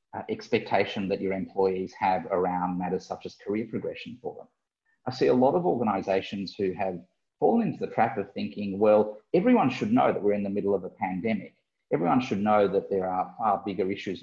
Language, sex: English, male